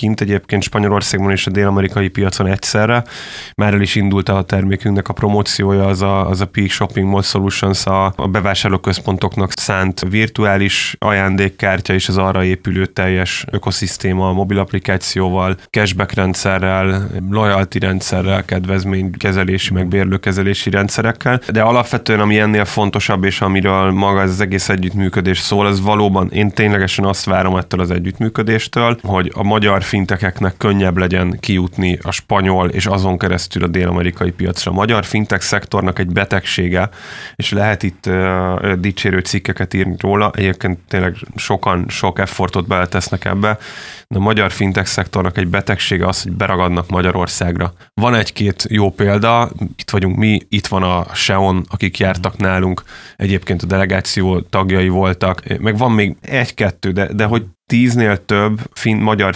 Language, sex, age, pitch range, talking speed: Hungarian, male, 20-39, 95-105 Hz, 145 wpm